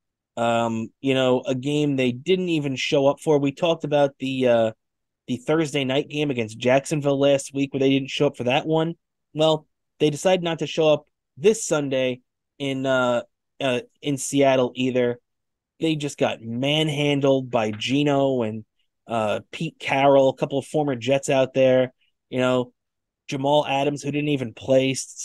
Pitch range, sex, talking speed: 130-175 Hz, male, 170 wpm